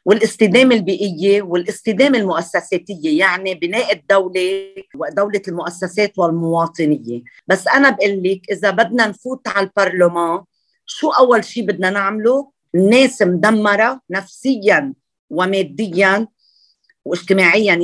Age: 40-59